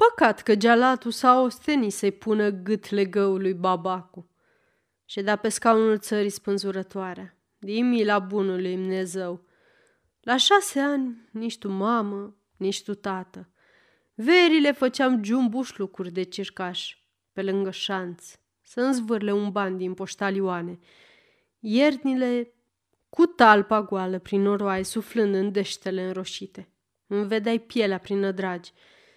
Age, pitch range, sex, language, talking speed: 20-39, 195-245 Hz, female, Romanian, 120 wpm